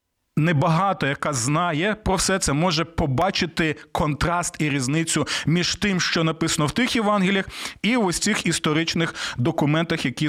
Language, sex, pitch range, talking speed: Ukrainian, male, 155-205 Hz, 145 wpm